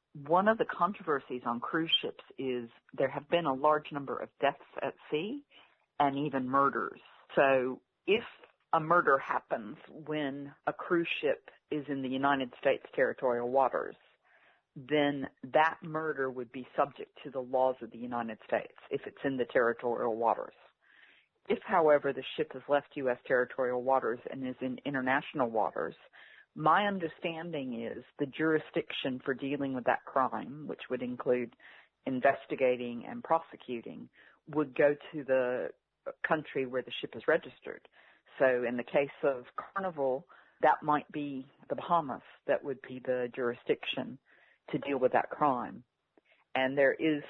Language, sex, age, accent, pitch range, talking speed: English, female, 50-69, American, 130-155 Hz, 150 wpm